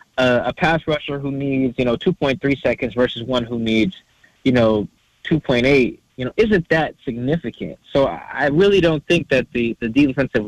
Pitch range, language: 115-155 Hz, English